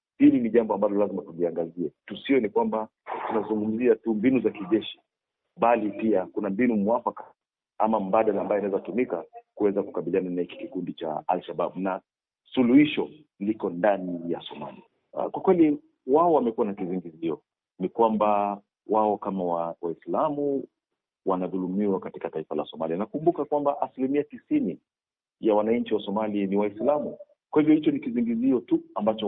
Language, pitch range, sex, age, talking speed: Swahili, 95-120 Hz, male, 40-59, 150 wpm